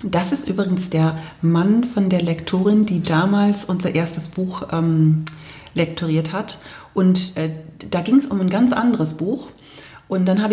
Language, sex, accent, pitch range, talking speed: German, female, German, 160-195 Hz, 165 wpm